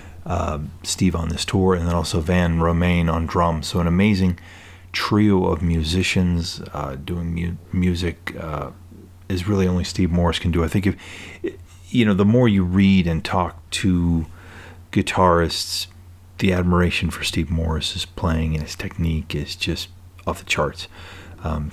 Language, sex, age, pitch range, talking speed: English, male, 40-59, 85-95 Hz, 165 wpm